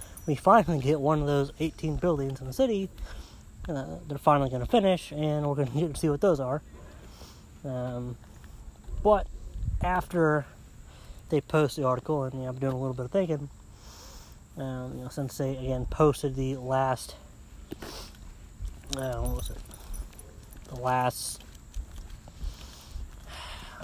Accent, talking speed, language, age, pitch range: American, 145 wpm, English, 30-49, 105-155 Hz